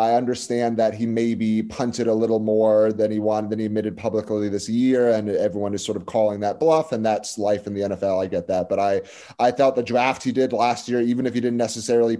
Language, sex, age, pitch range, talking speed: English, male, 30-49, 105-135 Hz, 245 wpm